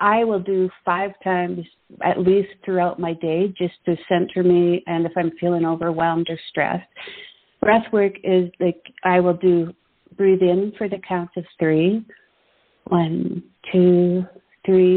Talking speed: 150 wpm